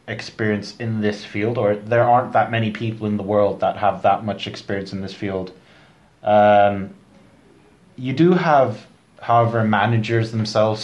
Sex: male